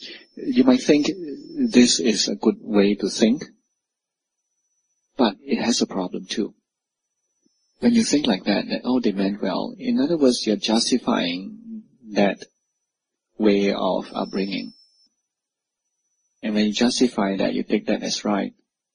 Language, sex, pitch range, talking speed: English, male, 100-160 Hz, 140 wpm